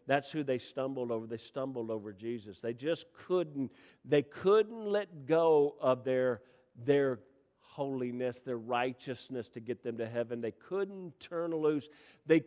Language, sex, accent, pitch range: English, male, American, 125-165 Hz